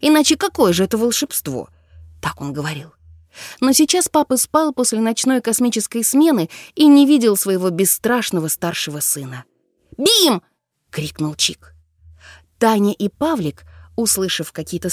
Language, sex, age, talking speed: Russian, female, 20-39, 125 wpm